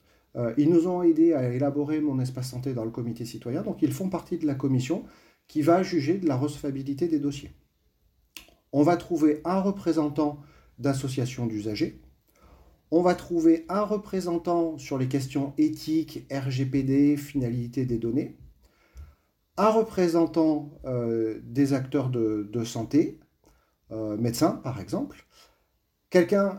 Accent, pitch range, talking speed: French, 125-165 Hz, 140 wpm